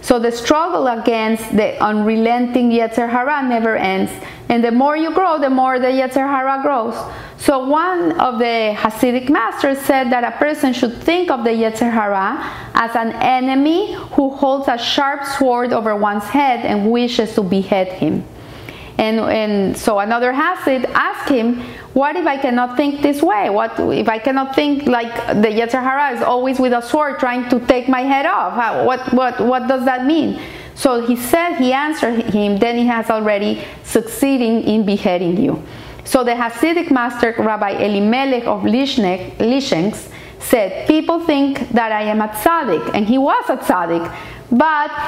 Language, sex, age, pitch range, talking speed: English, female, 40-59, 225-280 Hz, 170 wpm